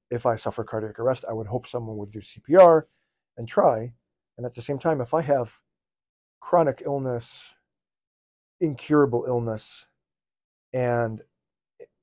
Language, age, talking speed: English, 40-59, 135 wpm